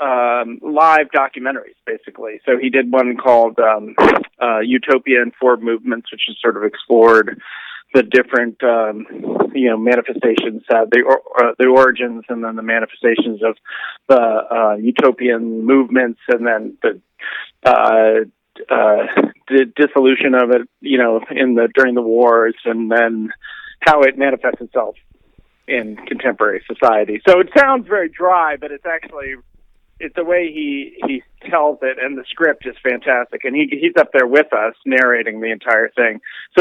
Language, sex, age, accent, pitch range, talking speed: English, male, 40-59, American, 115-145 Hz, 160 wpm